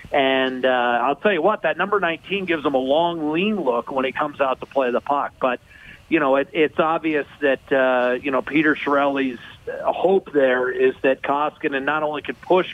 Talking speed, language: 205 wpm, English